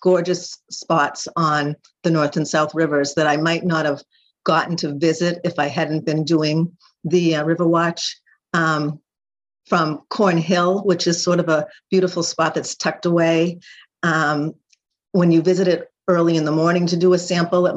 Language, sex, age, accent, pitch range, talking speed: English, female, 50-69, American, 155-175 Hz, 180 wpm